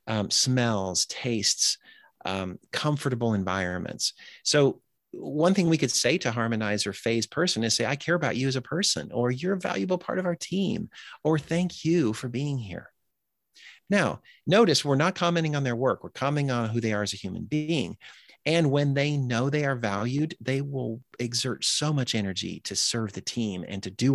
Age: 40-59